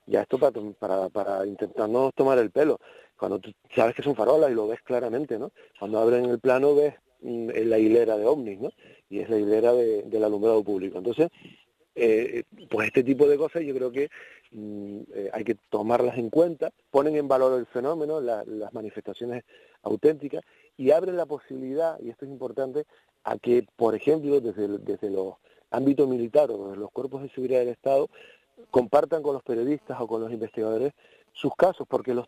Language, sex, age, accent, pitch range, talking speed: Spanish, male, 40-59, Argentinian, 115-160 Hz, 195 wpm